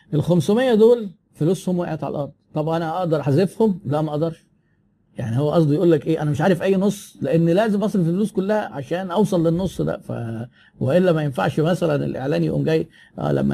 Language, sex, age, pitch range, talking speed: Arabic, male, 50-69, 140-190 Hz, 185 wpm